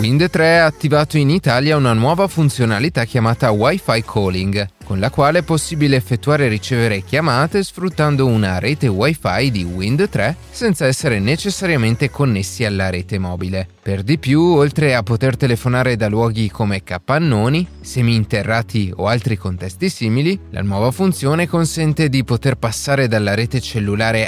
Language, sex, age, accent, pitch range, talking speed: Italian, male, 30-49, native, 110-150 Hz, 145 wpm